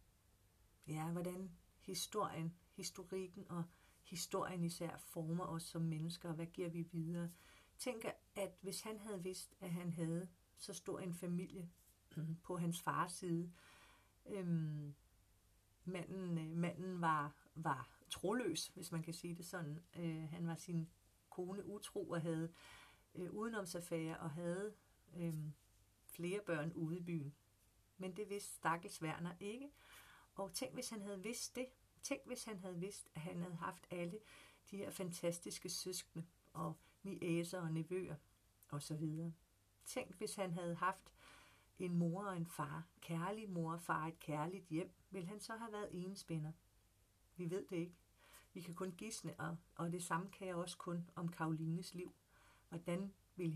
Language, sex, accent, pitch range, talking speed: Danish, female, native, 160-185 Hz, 155 wpm